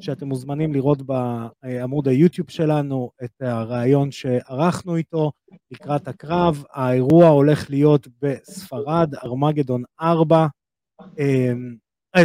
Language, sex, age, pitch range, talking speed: Hebrew, male, 30-49, 130-180 Hz, 95 wpm